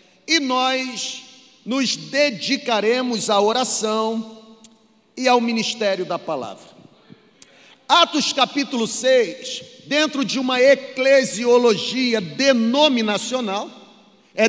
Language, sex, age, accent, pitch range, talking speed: Portuguese, male, 40-59, Brazilian, 225-275 Hz, 85 wpm